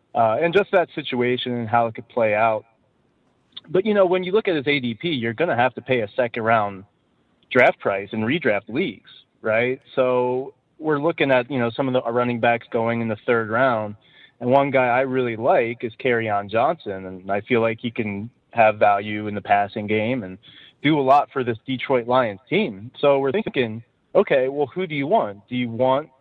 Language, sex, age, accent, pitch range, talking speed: English, male, 30-49, American, 115-150 Hz, 215 wpm